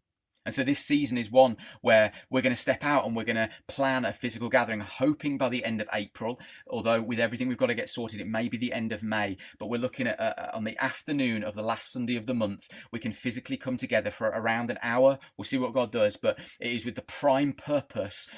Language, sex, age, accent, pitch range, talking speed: English, male, 30-49, British, 115-135 Hz, 250 wpm